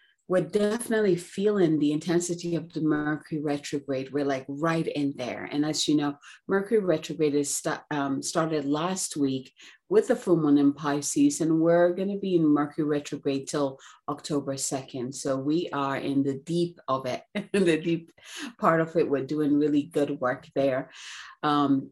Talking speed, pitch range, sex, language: 165 wpm, 140-170 Hz, female, English